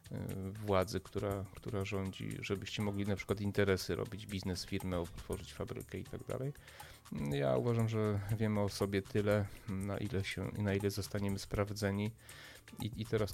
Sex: male